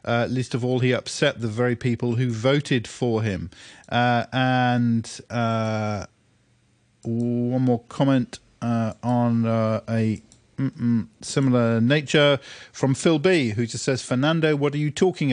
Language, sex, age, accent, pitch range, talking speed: English, male, 40-59, British, 115-145 Hz, 145 wpm